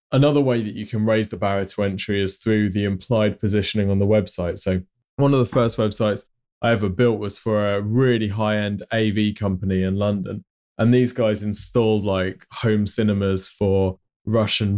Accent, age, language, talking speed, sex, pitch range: British, 20-39, English, 185 wpm, male, 100-115 Hz